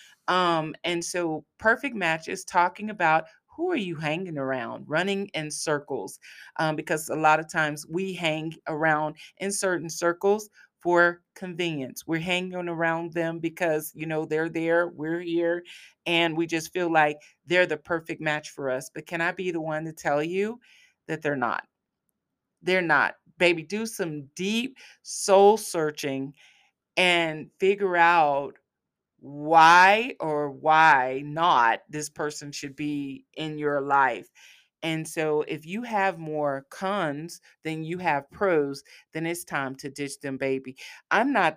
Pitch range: 150-175 Hz